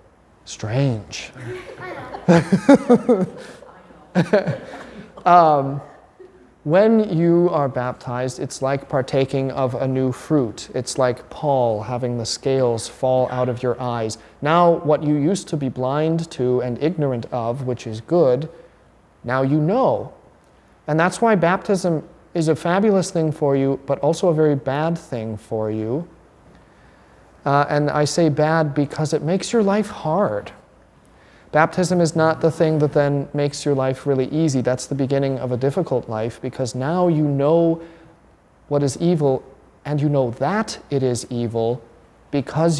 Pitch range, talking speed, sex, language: 130-165 Hz, 145 wpm, male, English